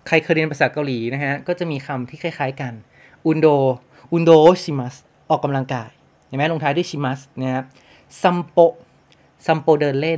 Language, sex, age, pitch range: Japanese, male, 20-39, 130-165 Hz